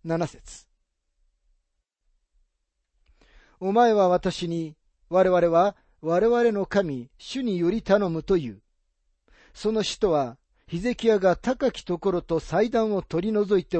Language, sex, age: Japanese, male, 40-59